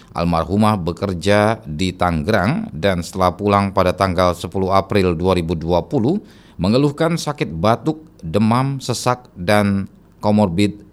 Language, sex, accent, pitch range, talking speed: Indonesian, male, native, 90-115 Hz, 105 wpm